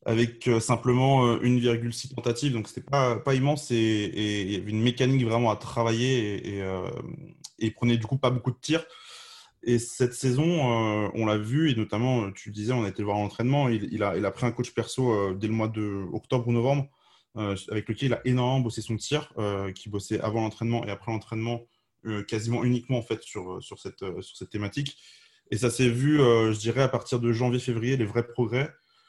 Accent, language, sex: French, French, male